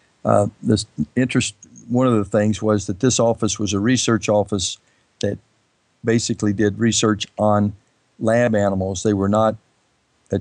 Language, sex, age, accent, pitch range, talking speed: English, male, 50-69, American, 100-115 Hz, 150 wpm